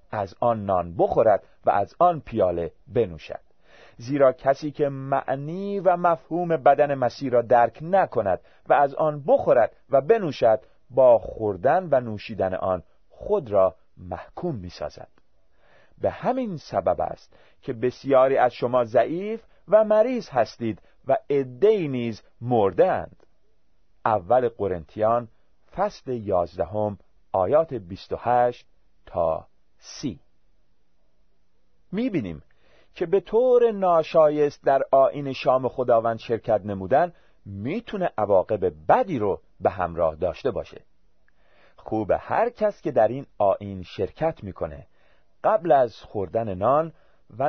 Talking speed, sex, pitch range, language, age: 115 wpm, male, 110-175 Hz, Persian, 40-59